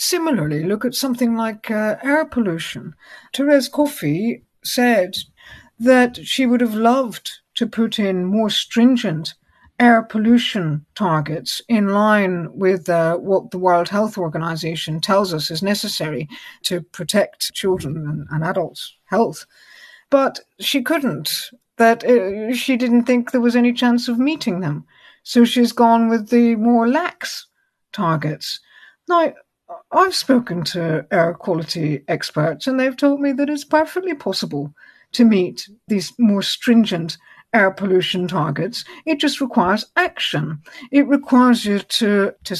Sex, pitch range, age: female, 180-250 Hz, 60-79